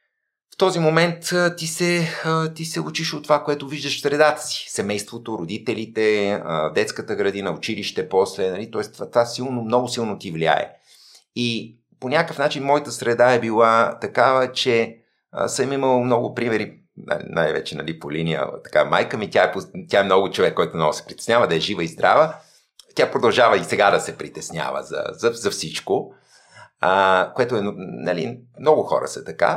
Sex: male